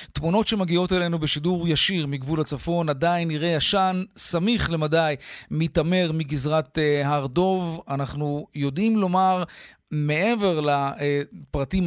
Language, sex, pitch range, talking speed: Hebrew, male, 150-175 Hz, 100 wpm